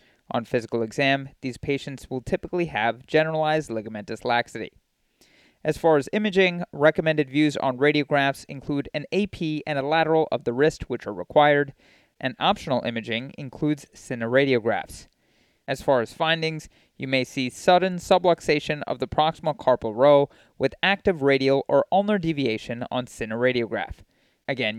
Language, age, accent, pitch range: English, 30-49, American, 125-165 Hz